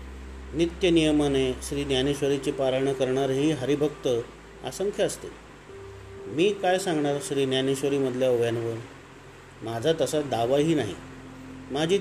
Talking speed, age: 105 wpm, 40-59